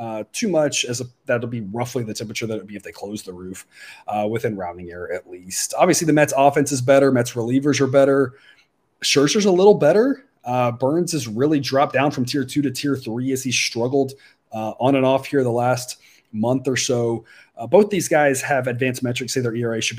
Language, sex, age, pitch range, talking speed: English, male, 30-49, 115-145 Hz, 220 wpm